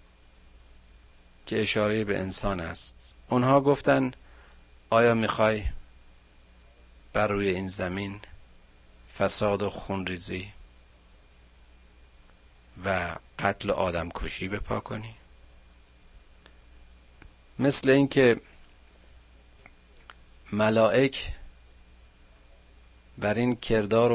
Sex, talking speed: male, 70 wpm